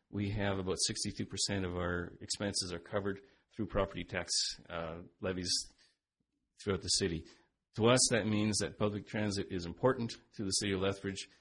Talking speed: 165 wpm